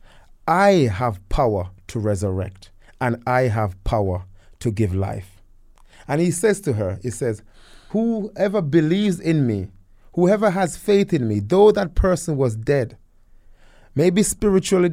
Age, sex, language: 30-49, male, English